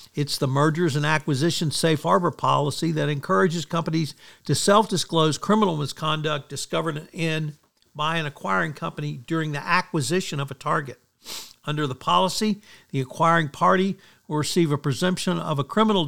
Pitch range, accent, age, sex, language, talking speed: 145-175 Hz, American, 60-79, male, English, 150 wpm